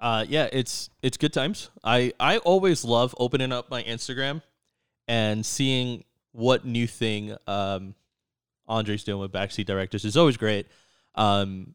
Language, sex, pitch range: English, male, 110-155 Hz